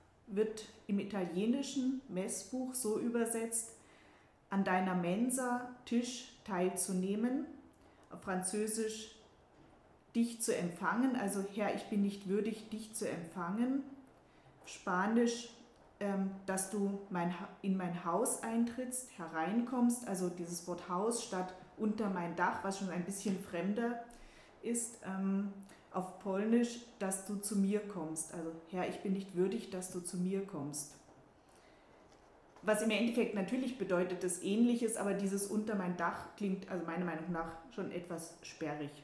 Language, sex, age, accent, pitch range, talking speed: German, female, 30-49, German, 180-220 Hz, 130 wpm